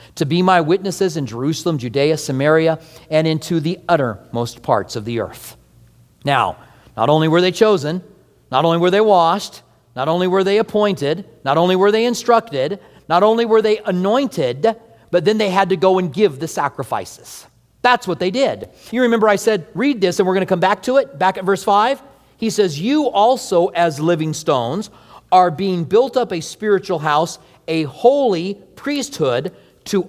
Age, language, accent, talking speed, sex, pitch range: 40-59, English, American, 180 wpm, male, 155-215 Hz